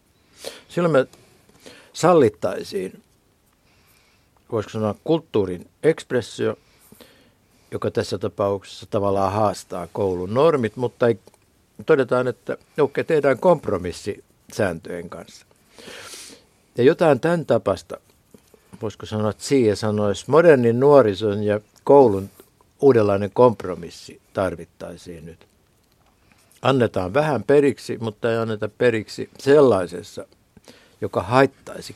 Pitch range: 95-125 Hz